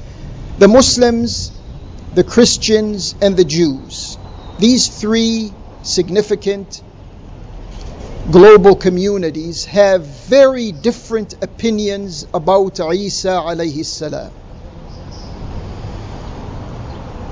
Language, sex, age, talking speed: English, male, 50-69, 60 wpm